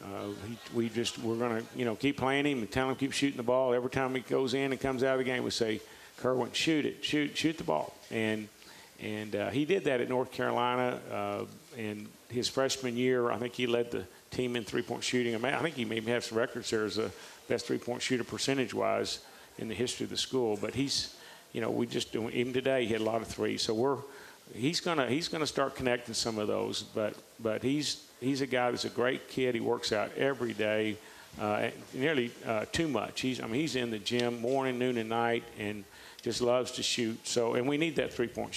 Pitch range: 110-130 Hz